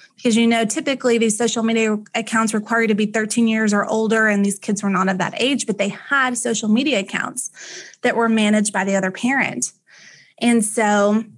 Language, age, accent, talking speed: English, 20-39, American, 205 wpm